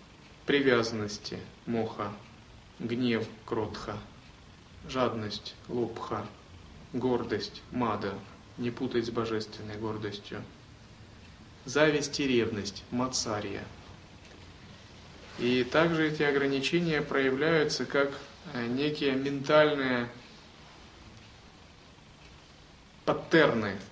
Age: 30-49